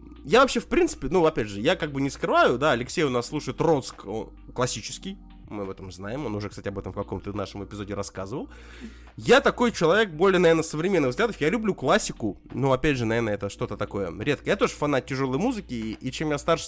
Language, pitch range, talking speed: Russian, 115-165 Hz, 220 wpm